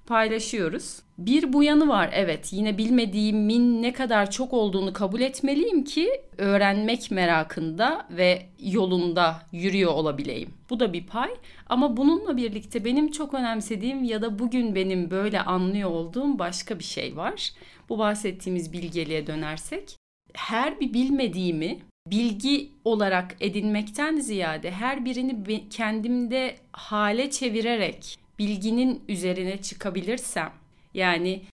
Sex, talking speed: female, 120 wpm